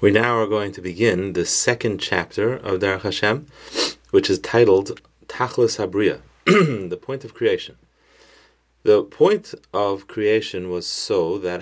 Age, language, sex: 30-49, English, male